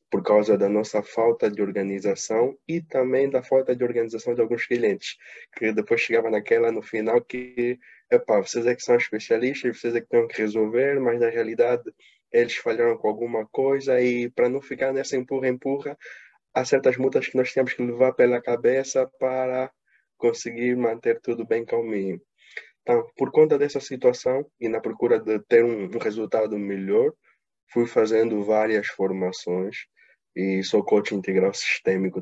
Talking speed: 165 wpm